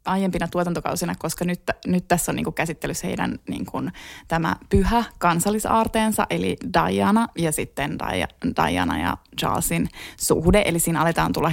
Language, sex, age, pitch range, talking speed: Finnish, female, 20-39, 165-195 Hz, 150 wpm